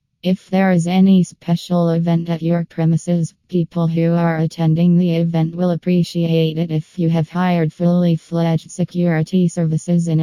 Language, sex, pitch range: English, female, 160-175 Hz